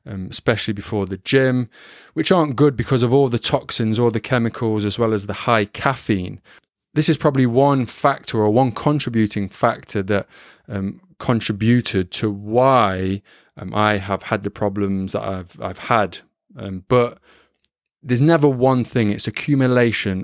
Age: 20-39